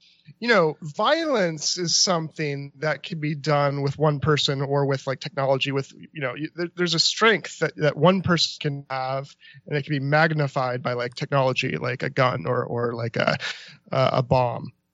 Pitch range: 150-195 Hz